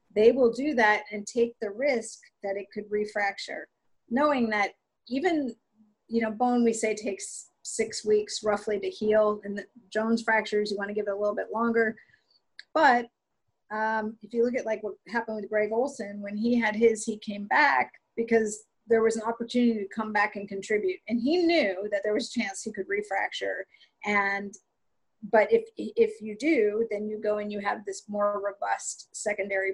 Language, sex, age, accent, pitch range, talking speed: English, female, 40-59, American, 205-230 Hz, 190 wpm